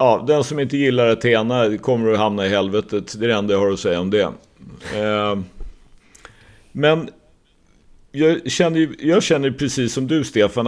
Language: Swedish